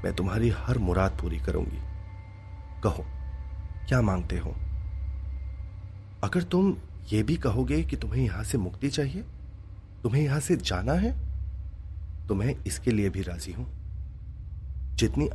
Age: 30-49